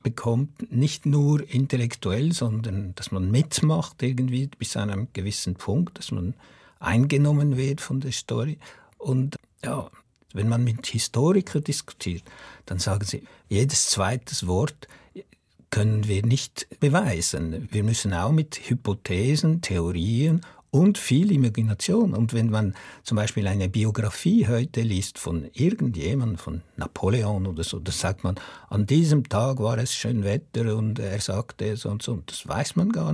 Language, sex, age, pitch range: German, male, 60-79, 105-140 Hz